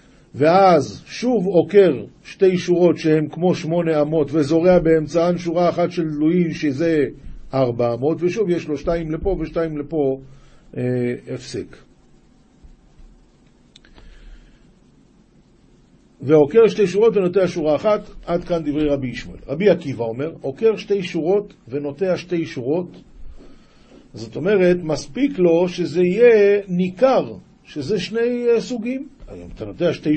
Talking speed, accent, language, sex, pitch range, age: 120 wpm, native, Hebrew, male, 150-200 Hz, 50-69